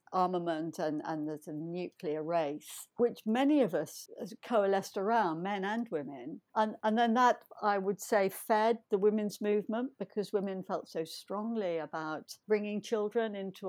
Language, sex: English, female